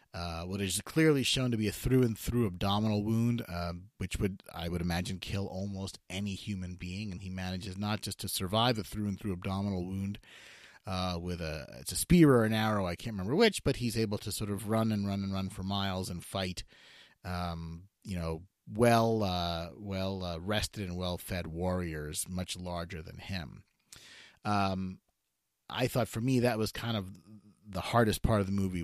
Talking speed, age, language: 195 wpm, 30-49, English